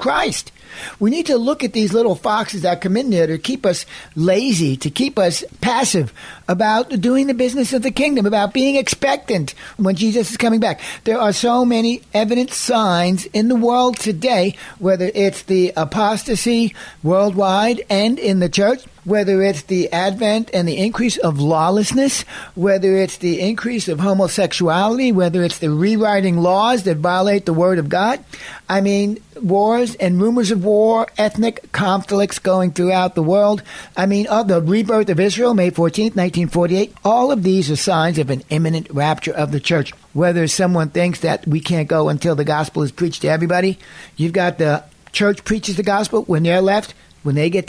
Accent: American